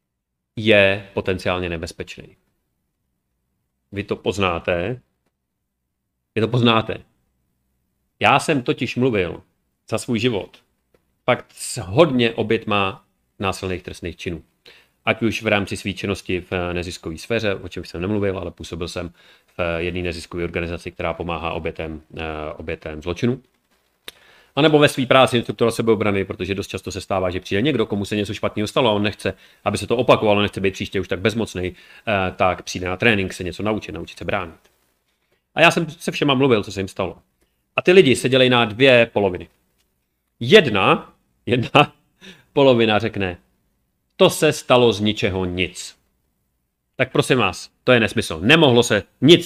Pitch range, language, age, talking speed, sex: 90-120 Hz, Czech, 30-49, 155 wpm, male